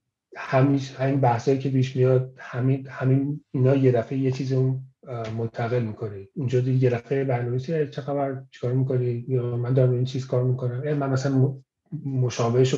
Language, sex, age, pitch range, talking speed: Persian, male, 40-59, 115-140 Hz, 165 wpm